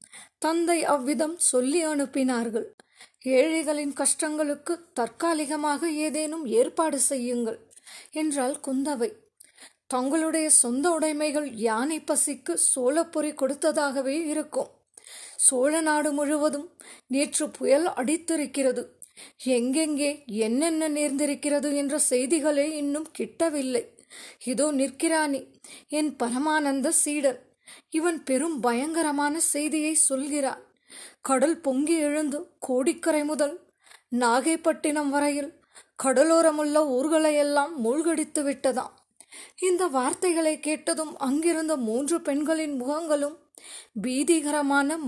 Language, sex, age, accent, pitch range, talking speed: Tamil, female, 20-39, native, 270-320 Hz, 80 wpm